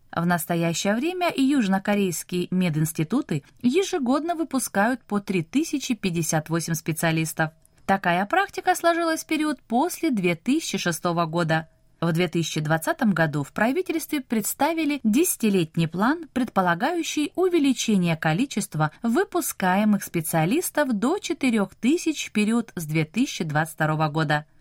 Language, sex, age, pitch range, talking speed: Russian, female, 20-39, 165-280 Hz, 95 wpm